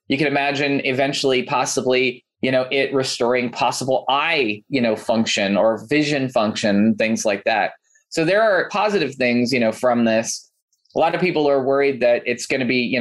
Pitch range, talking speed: 110-135 Hz, 190 wpm